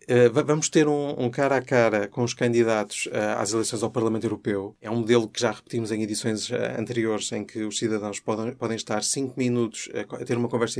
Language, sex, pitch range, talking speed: Portuguese, male, 105-120 Hz, 195 wpm